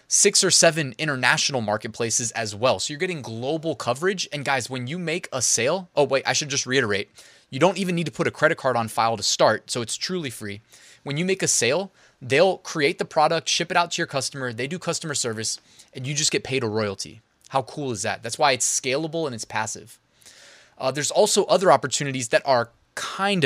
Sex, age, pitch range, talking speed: male, 20-39, 130-175 Hz, 225 wpm